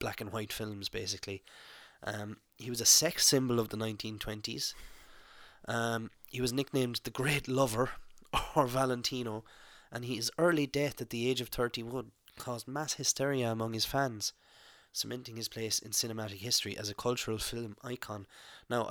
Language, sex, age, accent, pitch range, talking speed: English, male, 20-39, Irish, 110-125 Hz, 160 wpm